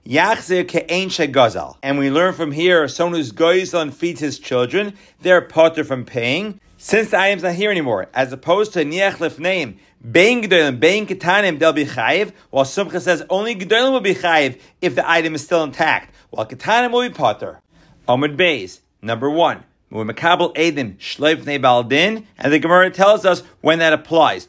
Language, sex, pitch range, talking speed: English, male, 135-180 Hz, 145 wpm